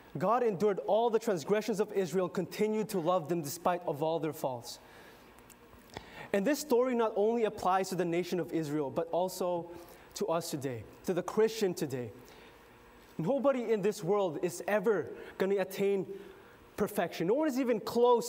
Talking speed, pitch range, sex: 165 wpm, 185-245 Hz, male